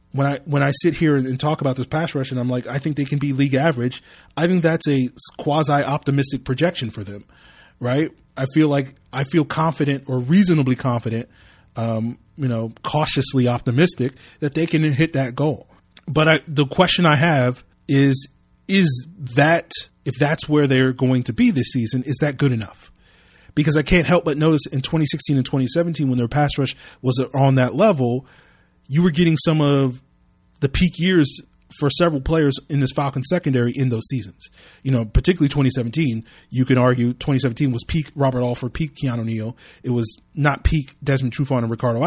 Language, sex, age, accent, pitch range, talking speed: English, male, 30-49, American, 125-155 Hz, 190 wpm